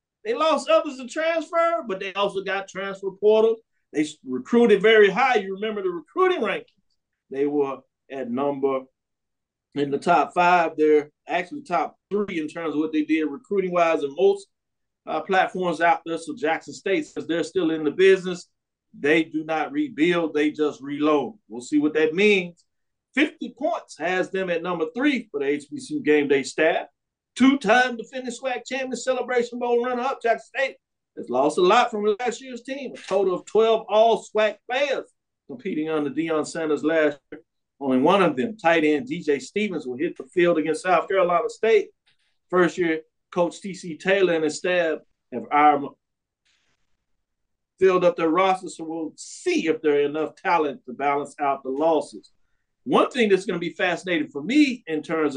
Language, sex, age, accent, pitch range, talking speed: English, male, 50-69, American, 155-240 Hz, 175 wpm